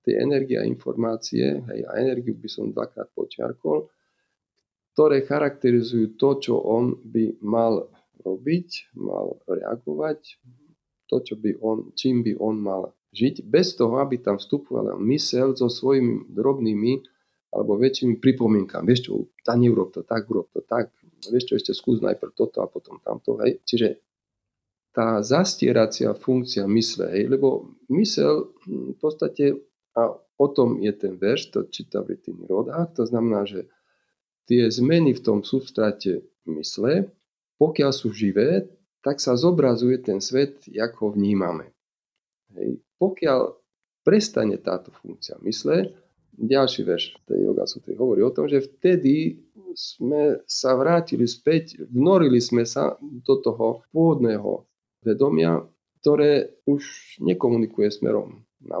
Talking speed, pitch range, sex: 135 wpm, 110-145 Hz, male